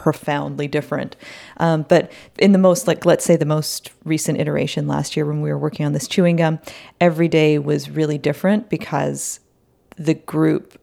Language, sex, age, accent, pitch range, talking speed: French, female, 40-59, American, 150-175 Hz, 175 wpm